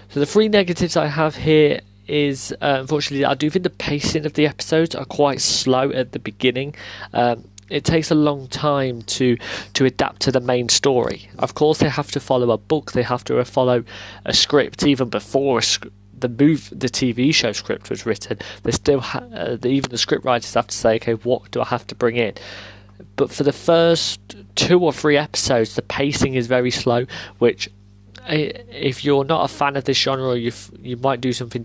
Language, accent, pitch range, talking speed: English, British, 115-140 Hz, 210 wpm